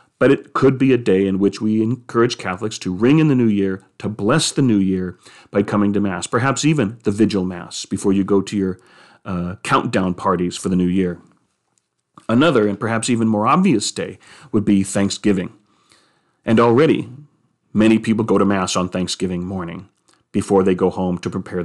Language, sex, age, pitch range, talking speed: English, male, 40-59, 100-130 Hz, 190 wpm